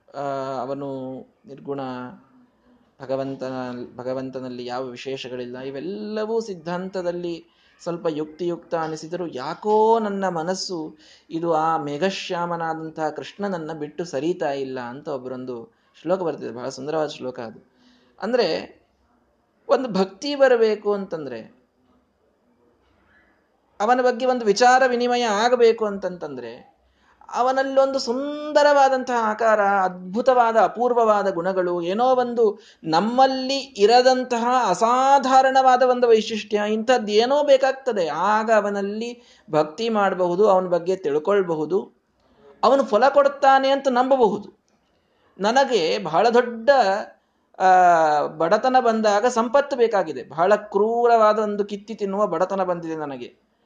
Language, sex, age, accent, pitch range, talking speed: Kannada, male, 20-39, native, 160-250 Hz, 95 wpm